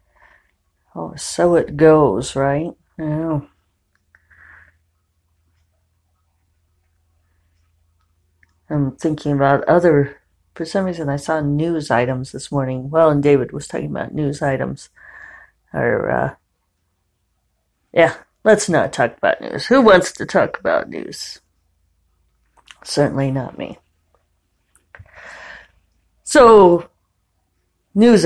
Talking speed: 100 wpm